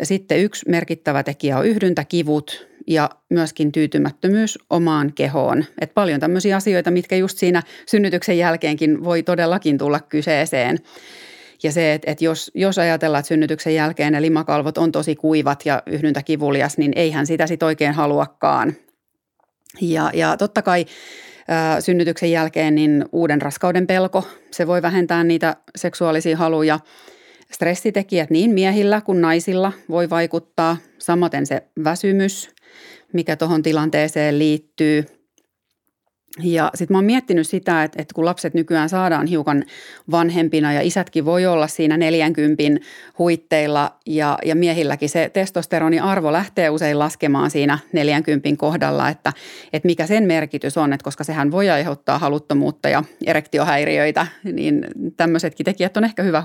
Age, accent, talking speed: 30-49, native, 135 wpm